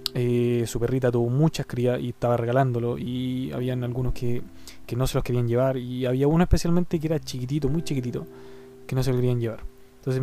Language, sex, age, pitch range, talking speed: Spanish, male, 20-39, 120-155 Hz, 205 wpm